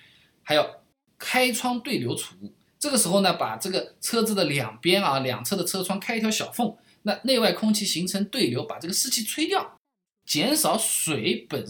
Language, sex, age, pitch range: Chinese, male, 20-39, 120-190 Hz